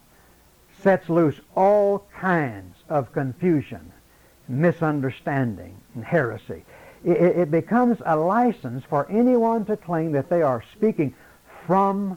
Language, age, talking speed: English, 60-79, 115 wpm